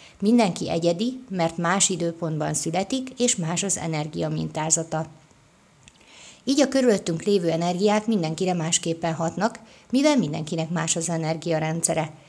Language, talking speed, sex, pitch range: Hungarian, 115 wpm, female, 165-210 Hz